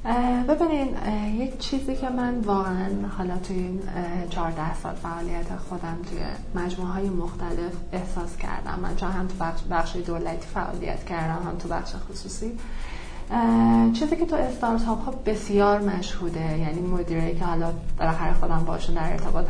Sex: female